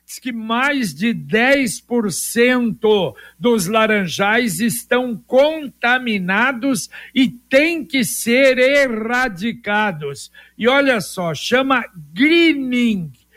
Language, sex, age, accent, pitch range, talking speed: Portuguese, male, 60-79, Brazilian, 210-255 Hz, 80 wpm